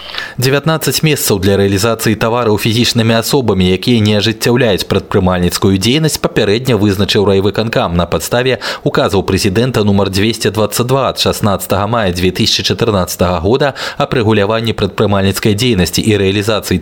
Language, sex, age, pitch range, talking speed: Russian, male, 20-39, 90-125 Hz, 120 wpm